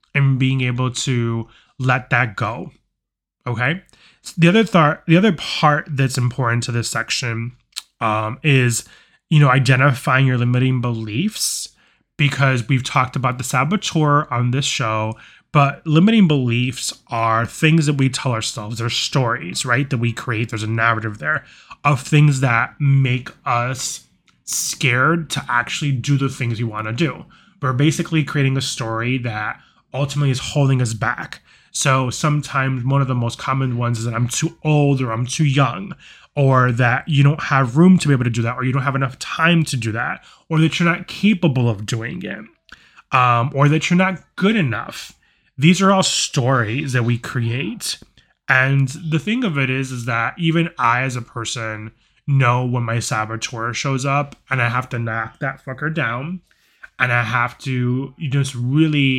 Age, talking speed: 20-39, 175 wpm